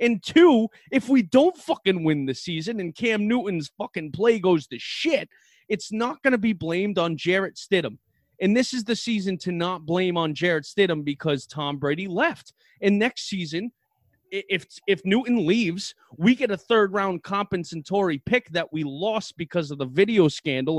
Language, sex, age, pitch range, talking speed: English, male, 30-49, 165-225 Hz, 180 wpm